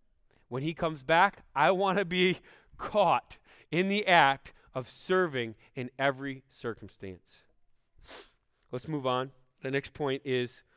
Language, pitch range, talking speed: English, 120-165 Hz, 135 wpm